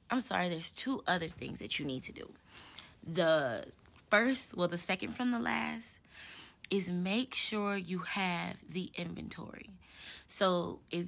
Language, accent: English, American